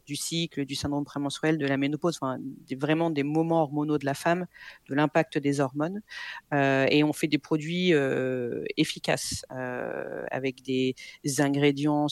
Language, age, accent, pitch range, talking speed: French, 40-59, French, 145-170 Hz, 165 wpm